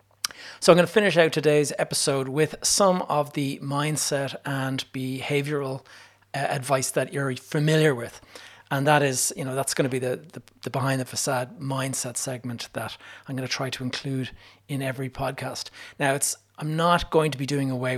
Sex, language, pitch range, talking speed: male, English, 130-145 Hz, 190 wpm